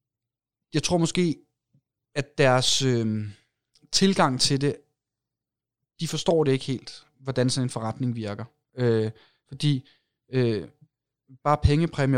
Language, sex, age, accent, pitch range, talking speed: Danish, male, 30-49, native, 125-150 Hz, 120 wpm